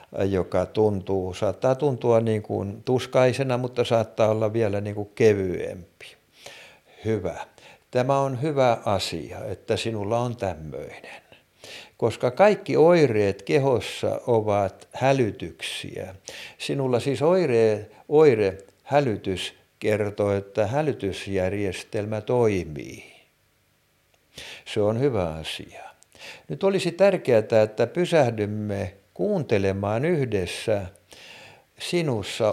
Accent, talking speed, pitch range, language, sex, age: native, 90 wpm, 100-135 Hz, Finnish, male, 60-79